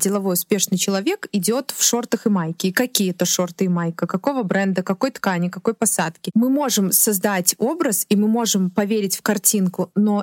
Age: 20-39